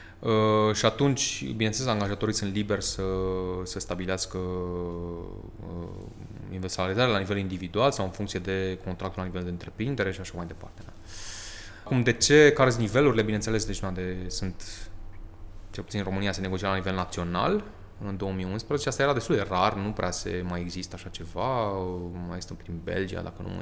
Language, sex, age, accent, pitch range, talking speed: Romanian, male, 20-39, native, 90-105 Hz, 180 wpm